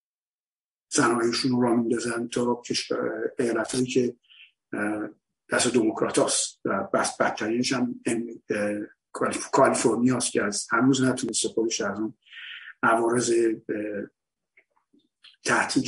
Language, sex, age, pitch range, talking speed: Persian, male, 50-69, 110-130 Hz, 80 wpm